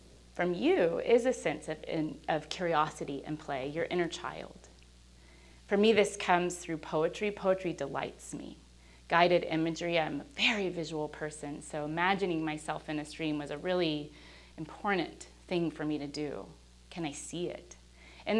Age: 30-49